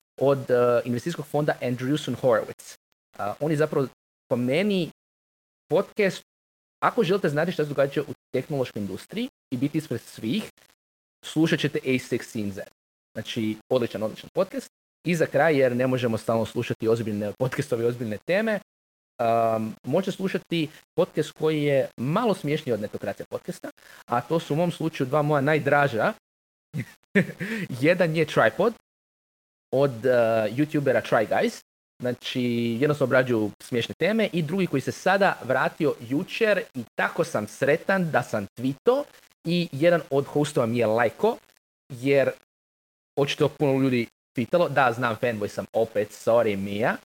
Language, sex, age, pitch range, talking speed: Croatian, male, 20-39, 120-155 Hz, 145 wpm